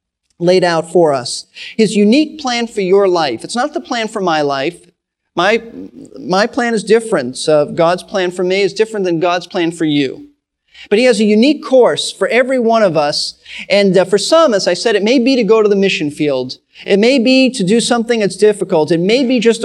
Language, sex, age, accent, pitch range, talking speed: English, male, 40-59, American, 175-240 Hz, 225 wpm